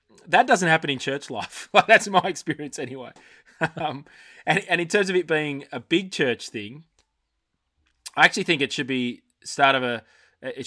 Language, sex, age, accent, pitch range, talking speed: English, male, 20-39, Australian, 115-140 Hz, 180 wpm